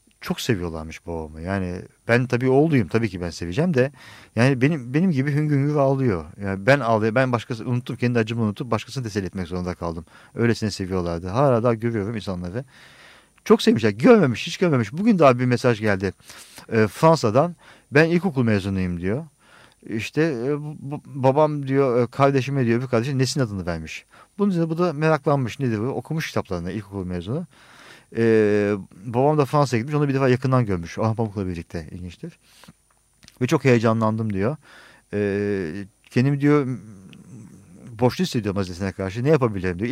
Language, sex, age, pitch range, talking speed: Turkish, male, 50-69, 100-135 Hz, 160 wpm